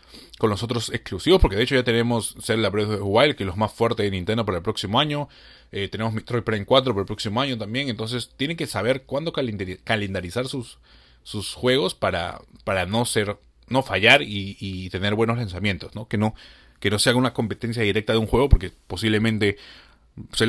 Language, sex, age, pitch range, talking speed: Spanish, male, 30-49, 100-120 Hz, 205 wpm